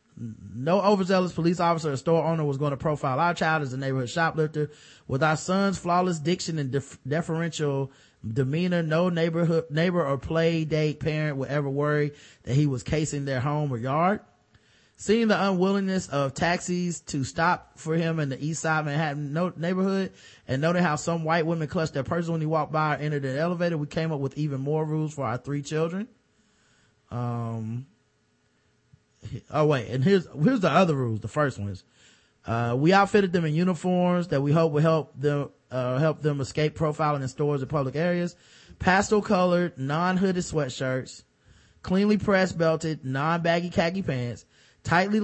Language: English